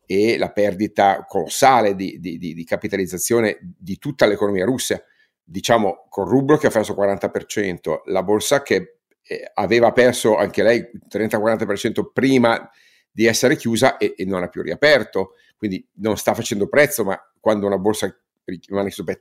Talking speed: 155 wpm